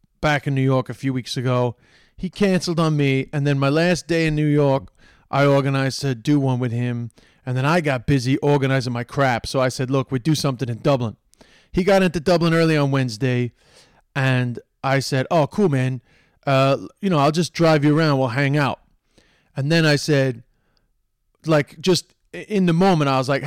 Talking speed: 205 wpm